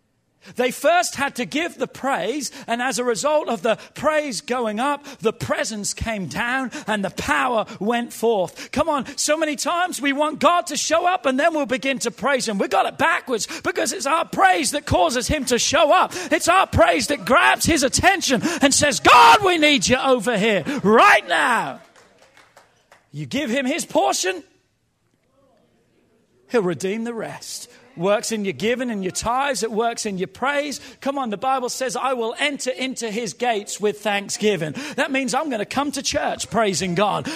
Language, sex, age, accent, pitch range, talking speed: English, male, 40-59, British, 190-280 Hz, 190 wpm